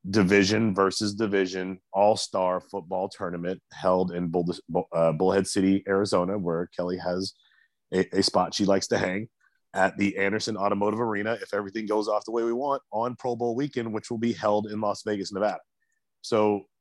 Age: 30-49